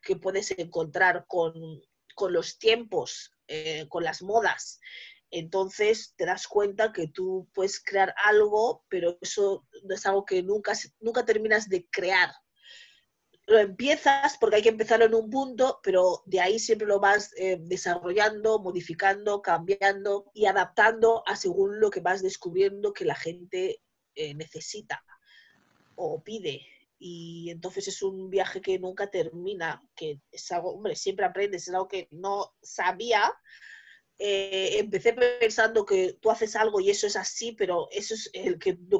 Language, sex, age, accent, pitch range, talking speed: Spanish, female, 30-49, Spanish, 185-260 Hz, 155 wpm